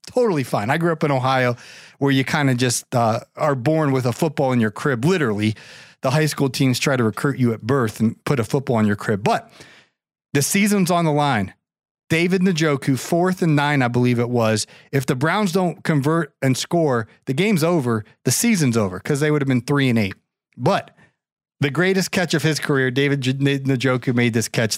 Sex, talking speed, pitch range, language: male, 210 wpm, 125-170 Hz, English